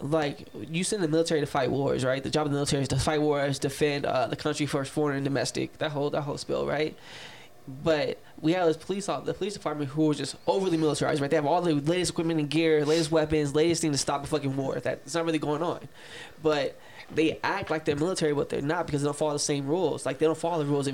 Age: 10-29